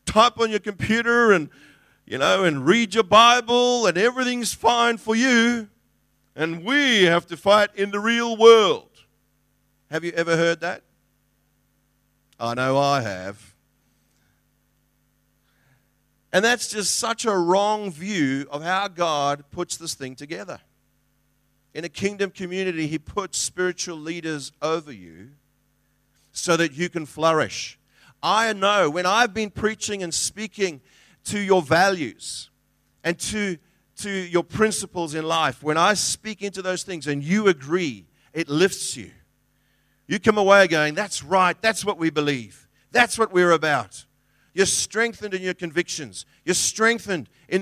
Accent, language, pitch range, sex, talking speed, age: Australian, English, 155-210 Hz, male, 145 wpm, 50-69